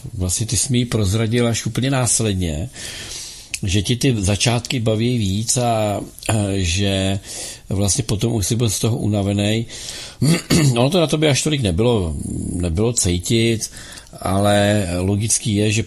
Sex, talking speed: male, 145 wpm